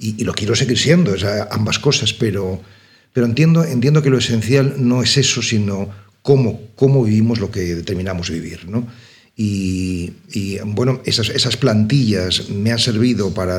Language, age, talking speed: Spanish, 40-59, 170 wpm